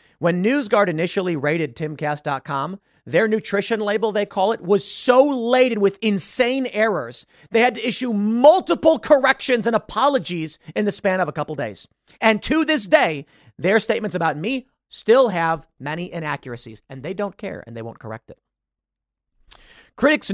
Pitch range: 150-220 Hz